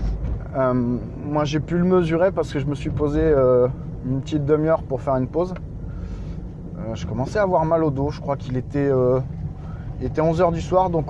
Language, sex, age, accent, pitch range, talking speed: French, male, 20-39, French, 130-165 Hz, 210 wpm